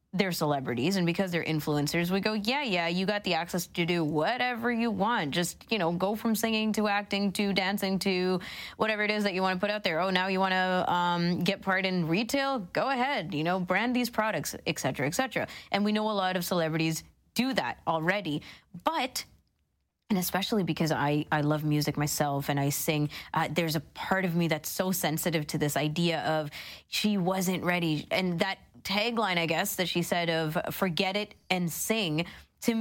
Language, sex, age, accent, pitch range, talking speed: English, female, 20-39, American, 165-205 Hz, 205 wpm